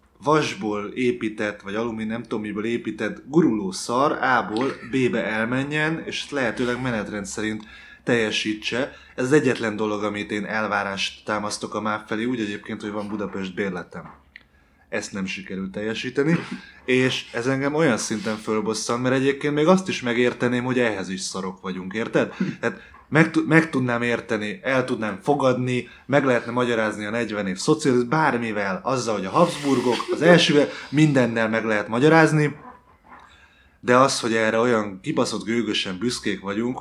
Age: 20-39